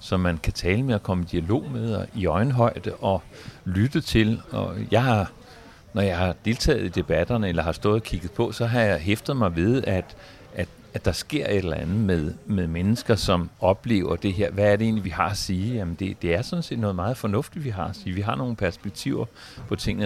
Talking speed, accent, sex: 235 wpm, native, male